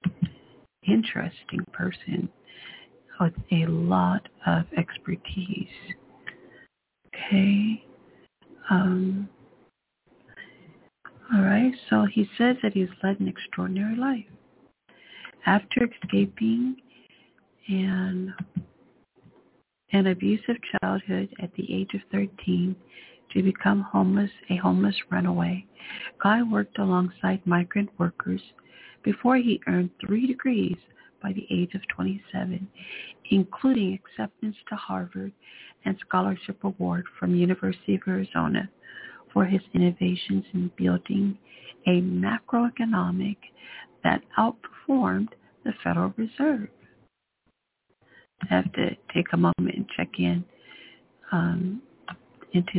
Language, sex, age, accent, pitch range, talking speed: English, female, 60-79, American, 180-210 Hz, 100 wpm